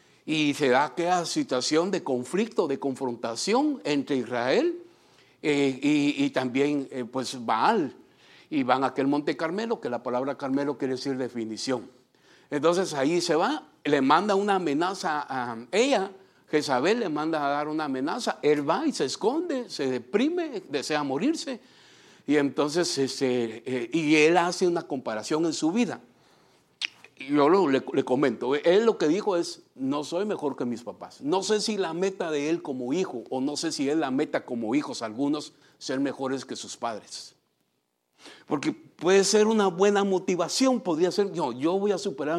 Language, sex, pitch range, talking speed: English, male, 140-190 Hz, 165 wpm